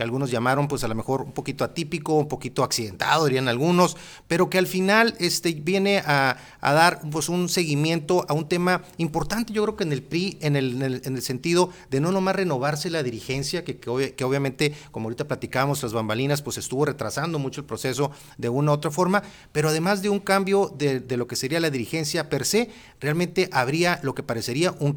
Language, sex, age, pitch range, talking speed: Spanish, male, 40-59, 130-170 Hz, 215 wpm